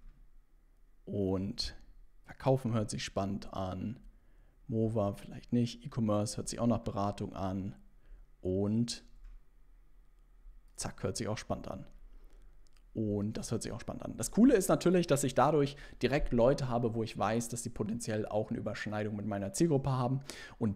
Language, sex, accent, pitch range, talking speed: German, male, German, 110-135 Hz, 155 wpm